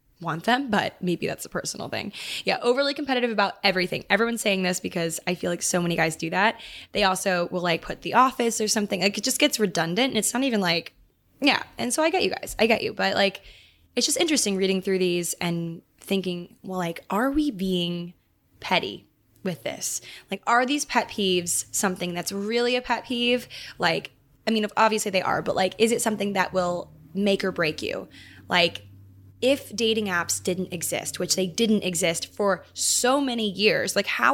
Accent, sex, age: American, female, 10-29